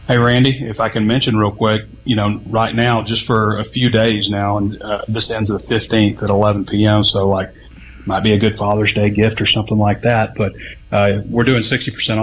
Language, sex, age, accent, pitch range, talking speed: English, male, 30-49, American, 100-110 Hz, 220 wpm